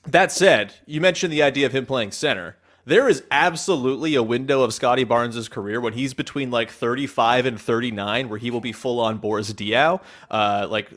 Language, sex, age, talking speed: English, male, 30-49, 190 wpm